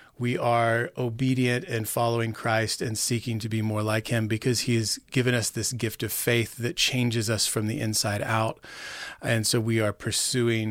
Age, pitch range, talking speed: 30-49, 115-130 Hz, 190 wpm